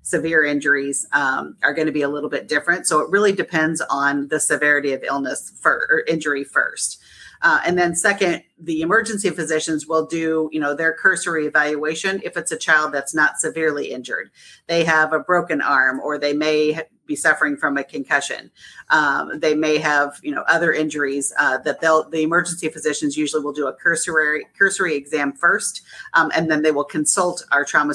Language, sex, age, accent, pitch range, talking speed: English, female, 40-59, American, 145-165 Hz, 190 wpm